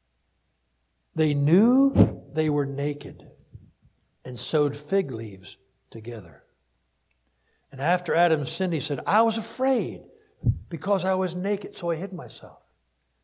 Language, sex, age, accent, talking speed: English, male, 60-79, American, 120 wpm